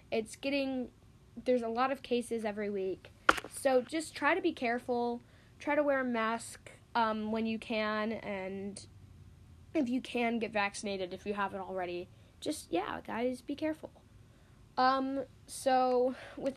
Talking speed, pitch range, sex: 150 wpm, 205-255 Hz, female